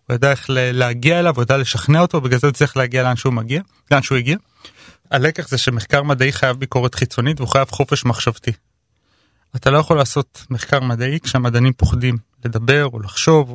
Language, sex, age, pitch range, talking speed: Hebrew, male, 30-49, 125-150 Hz, 175 wpm